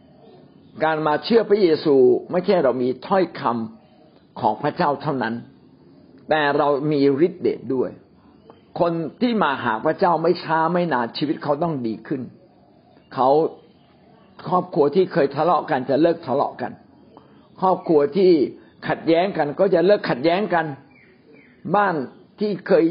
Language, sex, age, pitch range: Thai, male, 60-79, 140-185 Hz